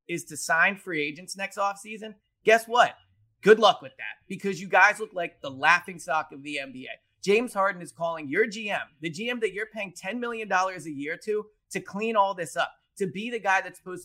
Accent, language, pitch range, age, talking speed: American, English, 150-220 Hz, 30-49, 220 wpm